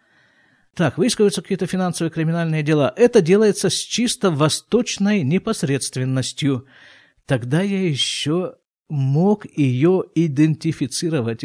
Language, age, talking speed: Russian, 50-69, 95 wpm